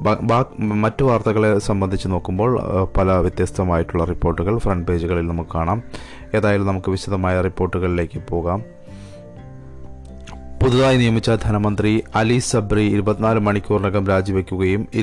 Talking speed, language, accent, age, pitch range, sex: 75 wpm, Malayalam, native, 30-49, 95-110 Hz, male